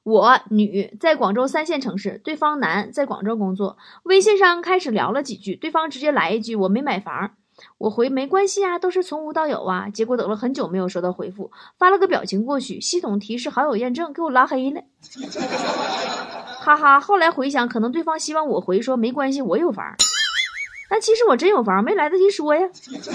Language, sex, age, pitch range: Chinese, female, 20-39, 200-265 Hz